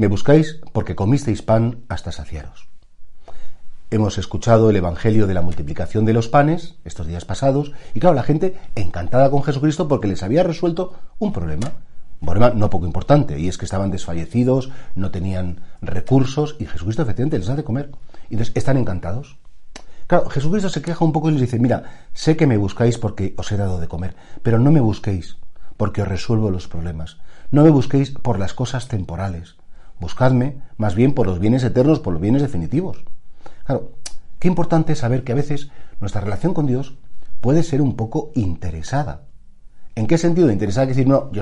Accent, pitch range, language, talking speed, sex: Spanish, 95-140 Hz, Spanish, 185 wpm, male